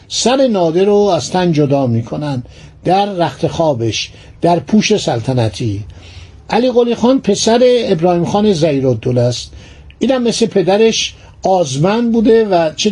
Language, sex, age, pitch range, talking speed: Persian, male, 60-79, 135-210 Hz, 120 wpm